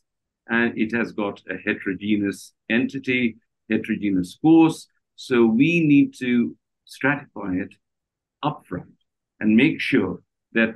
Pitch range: 100-125 Hz